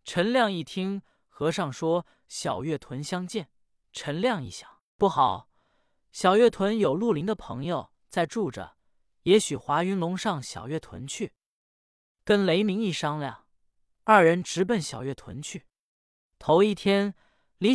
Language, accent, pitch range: Chinese, native, 145-200 Hz